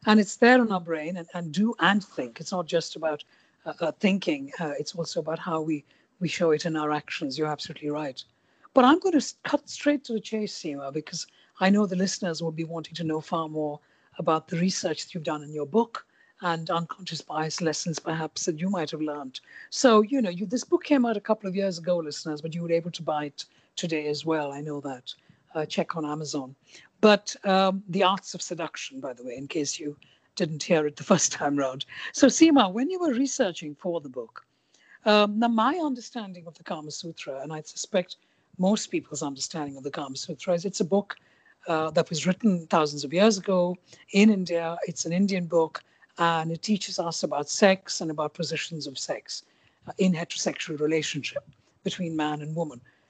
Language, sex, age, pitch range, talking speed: English, female, 60-79, 155-200 Hz, 210 wpm